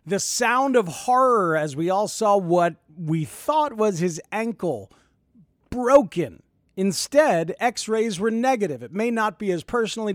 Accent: American